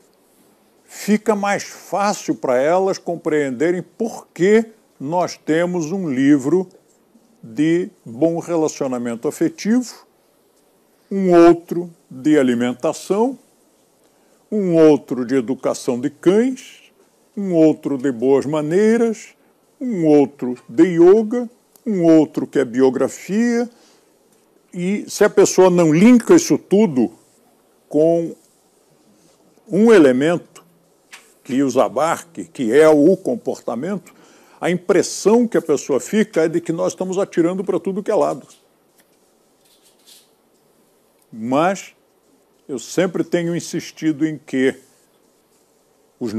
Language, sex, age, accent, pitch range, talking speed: Portuguese, male, 60-79, Brazilian, 155-210 Hz, 105 wpm